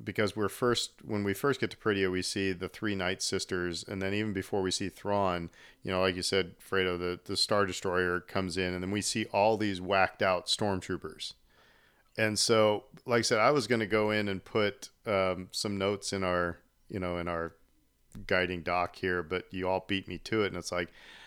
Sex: male